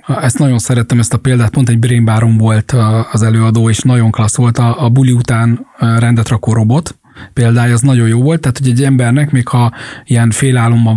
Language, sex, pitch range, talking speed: English, male, 120-140 Hz, 200 wpm